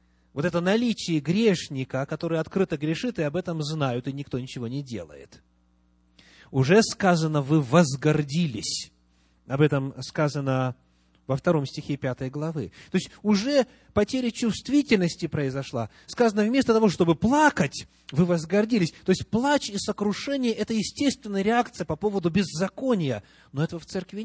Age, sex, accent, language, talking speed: 30-49, male, native, Russian, 140 wpm